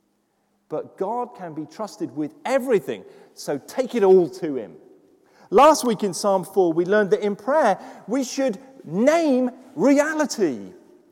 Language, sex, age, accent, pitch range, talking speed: English, male, 40-59, British, 165-270 Hz, 145 wpm